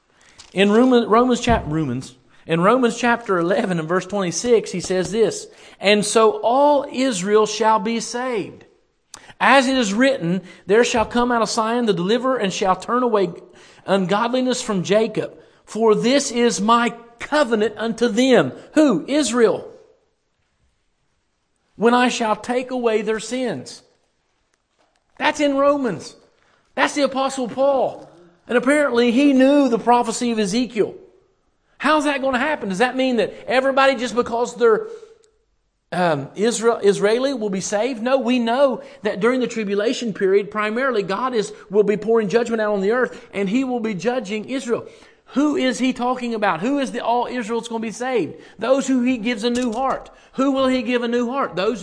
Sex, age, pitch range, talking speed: male, 50-69, 215-265 Hz, 165 wpm